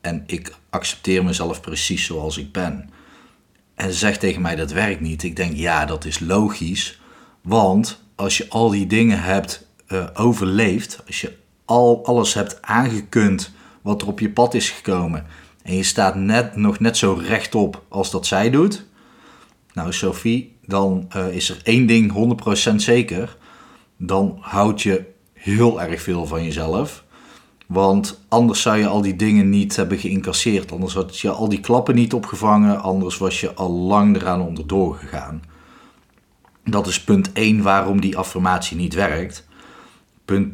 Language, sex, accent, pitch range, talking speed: Dutch, male, Dutch, 95-110 Hz, 165 wpm